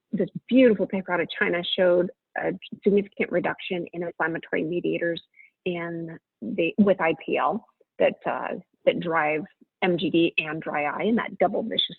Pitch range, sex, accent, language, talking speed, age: 175-215 Hz, female, American, English, 145 wpm, 30-49